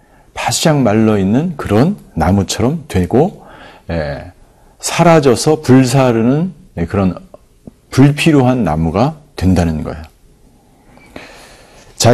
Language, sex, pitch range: Korean, male, 100-150 Hz